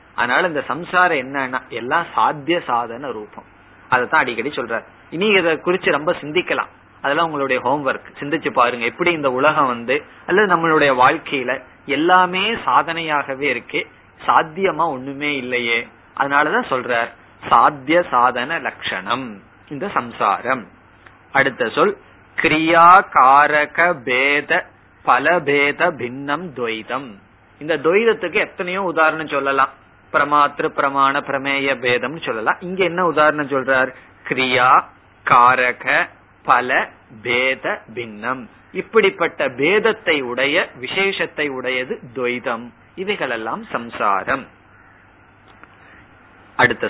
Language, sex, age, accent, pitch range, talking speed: Tamil, male, 20-39, native, 130-175 Hz, 90 wpm